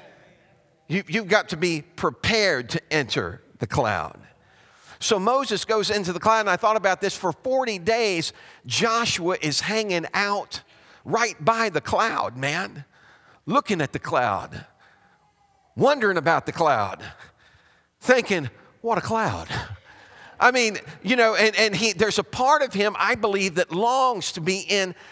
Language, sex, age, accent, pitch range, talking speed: English, male, 50-69, American, 180-225 Hz, 150 wpm